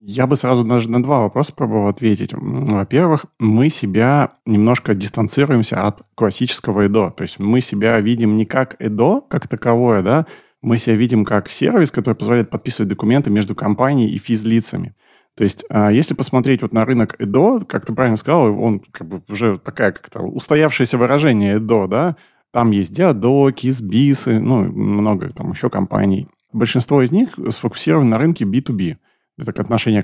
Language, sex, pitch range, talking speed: Russian, male, 110-135 Hz, 160 wpm